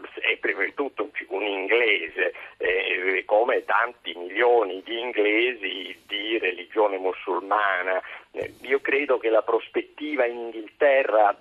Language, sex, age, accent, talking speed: Italian, male, 50-69, native, 120 wpm